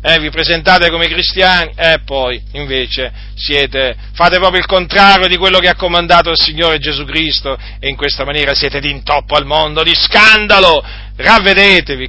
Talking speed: 175 wpm